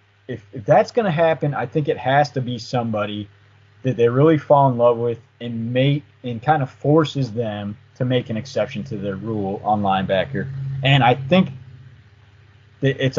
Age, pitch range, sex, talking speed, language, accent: 30-49, 110-150 Hz, male, 185 wpm, English, American